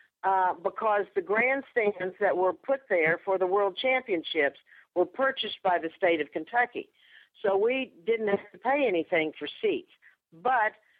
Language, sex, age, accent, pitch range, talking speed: English, female, 50-69, American, 175-225 Hz, 160 wpm